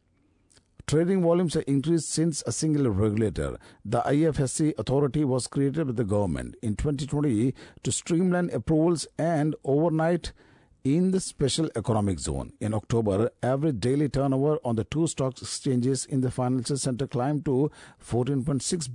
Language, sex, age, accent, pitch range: Japanese, male, 50-69, Indian, 115-145 Hz